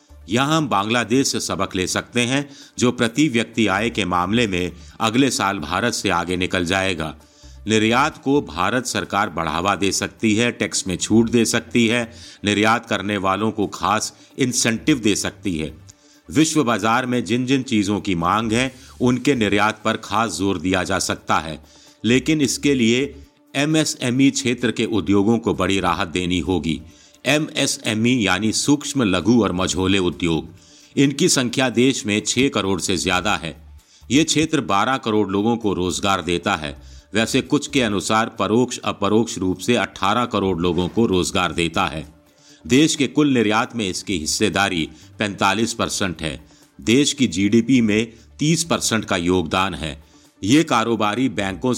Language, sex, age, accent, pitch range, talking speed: Hindi, male, 50-69, native, 95-120 Hz, 160 wpm